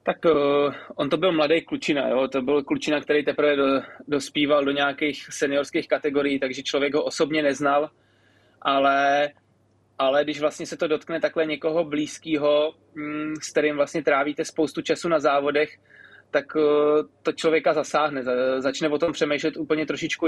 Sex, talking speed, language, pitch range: male, 150 wpm, Czech, 145-155 Hz